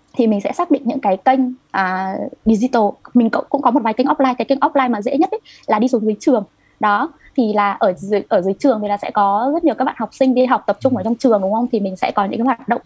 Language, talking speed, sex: Vietnamese, 290 wpm, female